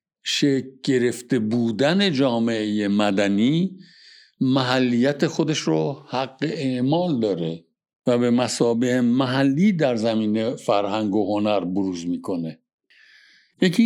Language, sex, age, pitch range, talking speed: Persian, male, 60-79, 115-170 Hz, 100 wpm